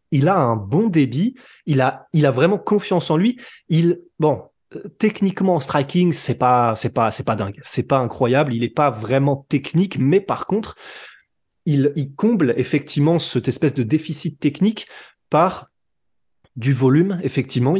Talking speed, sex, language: 160 wpm, male, French